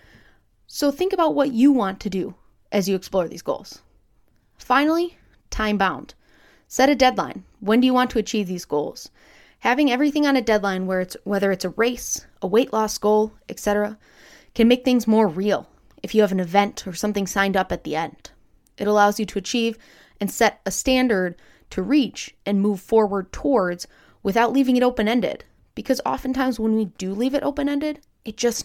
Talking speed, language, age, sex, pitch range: 180 wpm, English, 20-39, female, 195-255 Hz